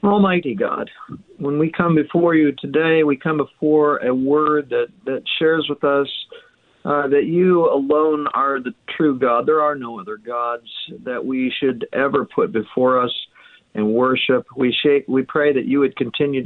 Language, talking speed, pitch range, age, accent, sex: English, 170 wpm, 130-150 Hz, 50-69, American, male